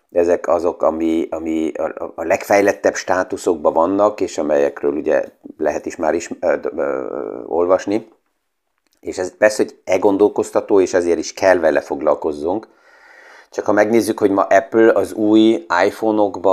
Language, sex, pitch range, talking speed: Hungarian, male, 90-115 Hz, 140 wpm